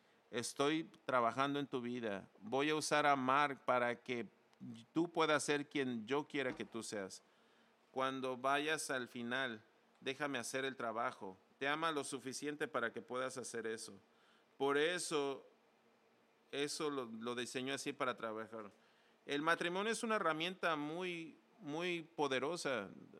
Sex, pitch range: male, 130-160 Hz